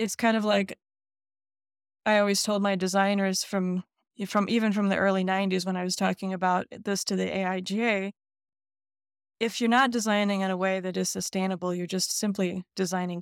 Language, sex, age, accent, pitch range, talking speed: English, female, 20-39, American, 185-210 Hz, 175 wpm